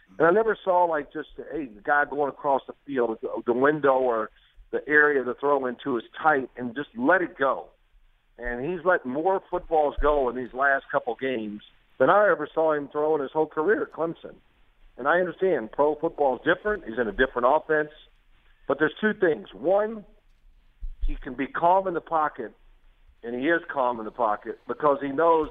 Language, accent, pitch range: English, American, 130-165 Hz